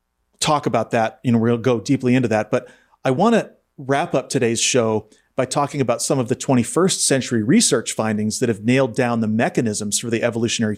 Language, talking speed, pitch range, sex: English, 205 wpm, 110-145 Hz, male